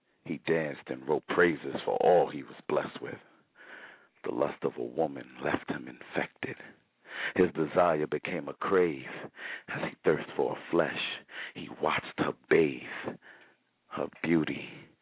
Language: English